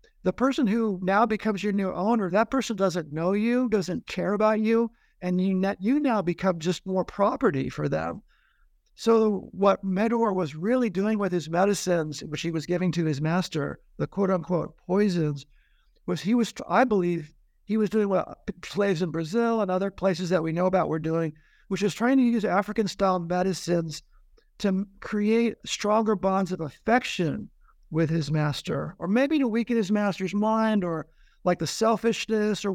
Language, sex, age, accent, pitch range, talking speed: English, male, 60-79, American, 175-220 Hz, 175 wpm